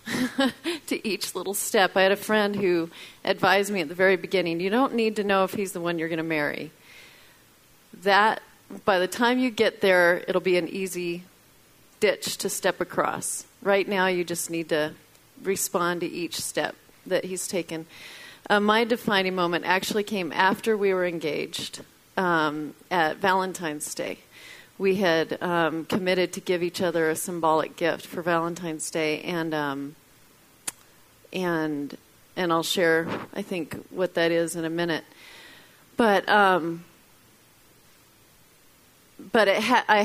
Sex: female